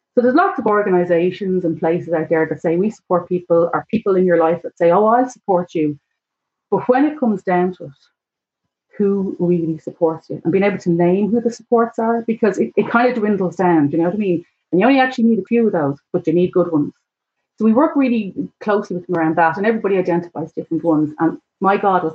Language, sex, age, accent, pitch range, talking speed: English, female, 30-49, Irish, 170-205 Hz, 245 wpm